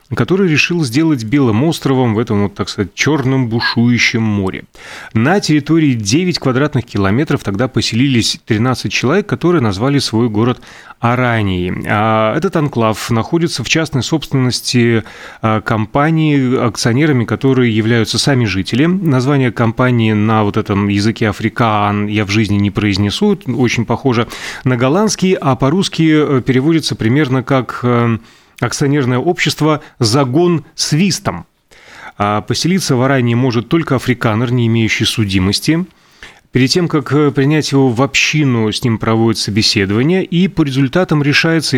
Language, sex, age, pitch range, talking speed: Russian, male, 30-49, 110-145 Hz, 130 wpm